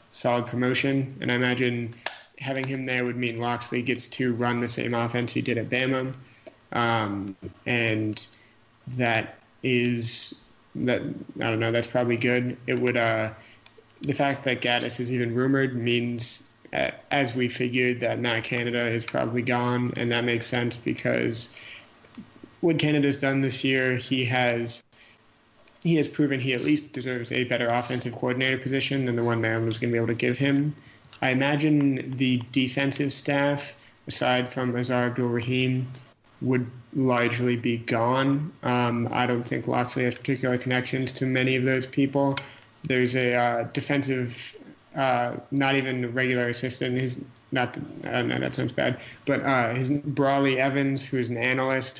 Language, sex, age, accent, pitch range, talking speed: English, male, 30-49, American, 120-130 Hz, 160 wpm